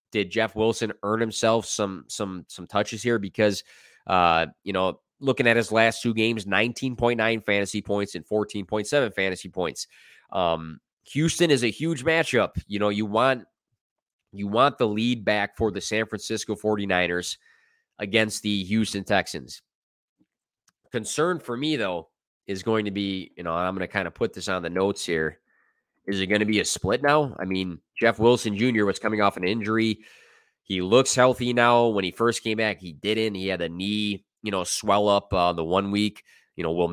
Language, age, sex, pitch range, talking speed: English, 20-39, male, 95-115 Hz, 190 wpm